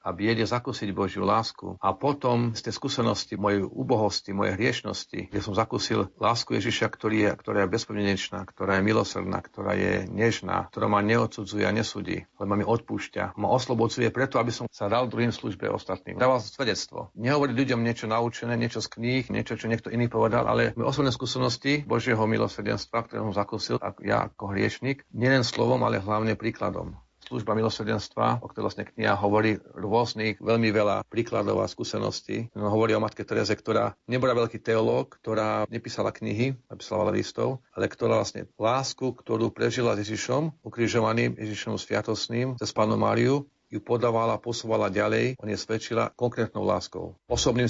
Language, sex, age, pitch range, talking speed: Slovak, male, 50-69, 105-120 Hz, 165 wpm